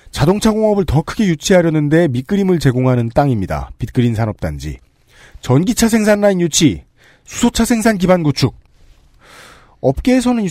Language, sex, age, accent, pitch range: Korean, male, 40-59, native, 135-200 Hz